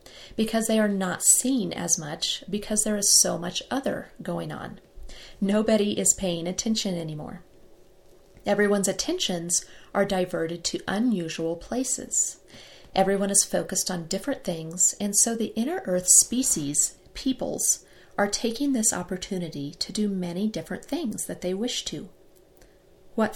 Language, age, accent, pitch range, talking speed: English, 40-59, American, 180-235 Hz, 140 wpm